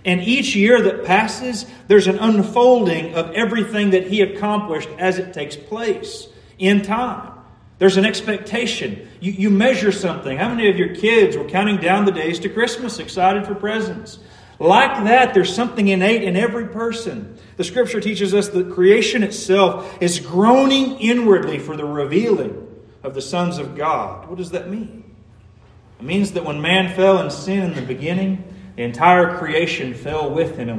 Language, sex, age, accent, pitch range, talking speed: English, male, 40-59, American, 155-215 Hz, 175 wpm